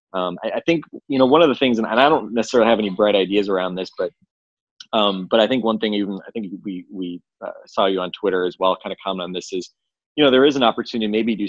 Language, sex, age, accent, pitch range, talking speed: English, male, 20-39, American, 95-110 Hz, 280 wpm